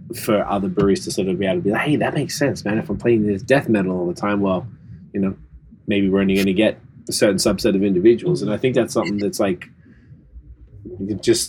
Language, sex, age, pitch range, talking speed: English, male, 20-39, 100-130 Hz, 245 wpm